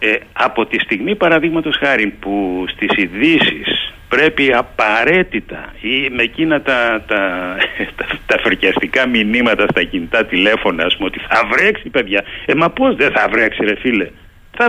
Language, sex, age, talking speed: Greek, male, 60-79, 155 wpm